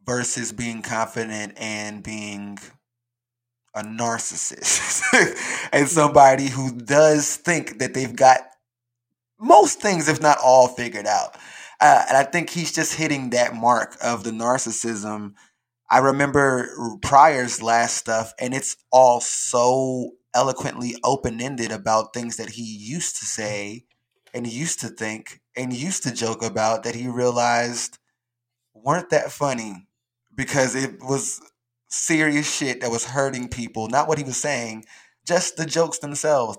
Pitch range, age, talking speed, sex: 115-130 Hz, 20-39, 140 wpm, male